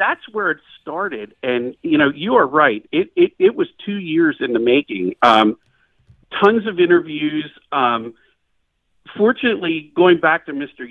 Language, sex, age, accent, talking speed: English, male, 50-69, American, 160 wpm